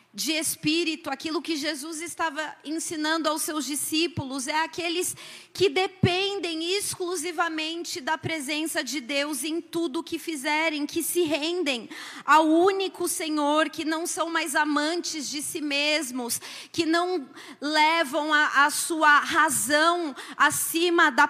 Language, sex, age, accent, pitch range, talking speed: Portuguese, female, 30-49, Brazilian, 290-340 Hz, 130 wpm